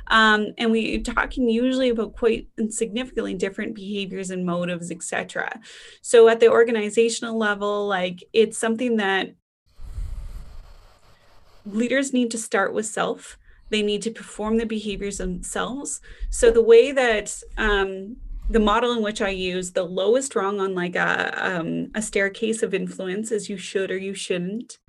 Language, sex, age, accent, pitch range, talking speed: English, female, 20-39, American, 195-235 Hz, 150 wpm